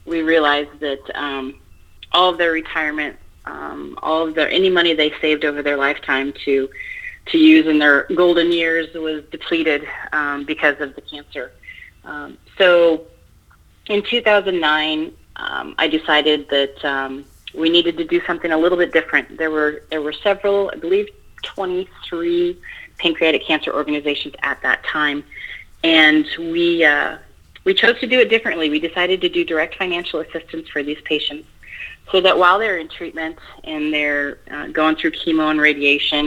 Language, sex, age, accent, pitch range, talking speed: English, female, 30-49, American, 145-170 Hz, 160 wpm